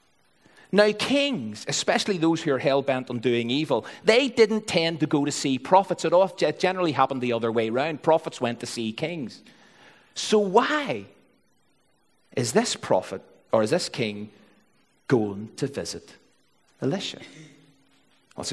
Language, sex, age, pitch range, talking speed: English, male, 40-59, 150-225 Hz, 150 wpm